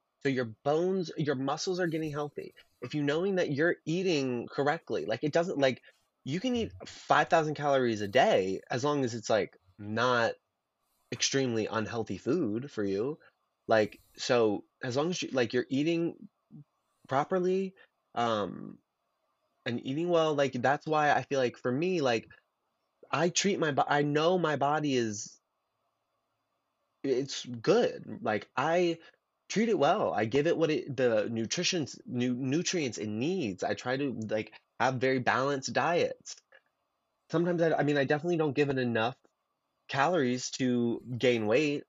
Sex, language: male, English